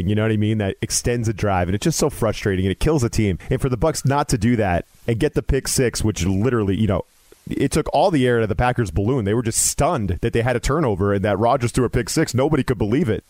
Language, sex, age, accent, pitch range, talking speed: English, male, 30-49, American, 105-125 Hz, 300 wpm